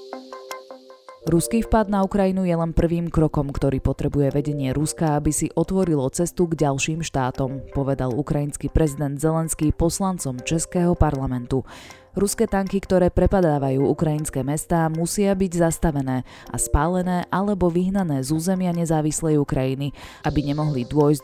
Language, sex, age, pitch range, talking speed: Slovak, female, 20-39, 135-175 Hz, 130 wpm